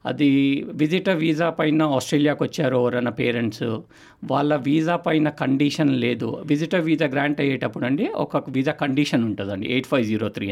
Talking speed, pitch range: 150 wpm, 120-145 Hz